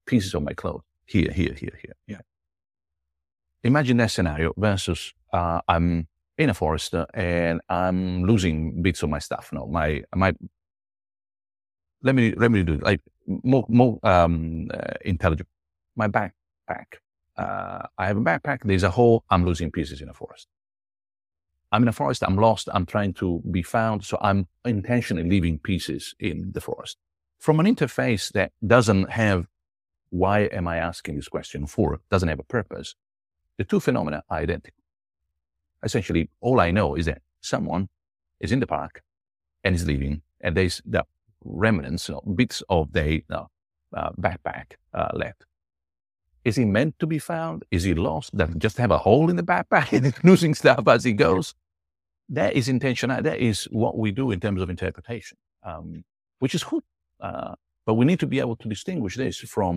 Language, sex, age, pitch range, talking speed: English, male, 50-69, 80-110 Hz, 175 wpm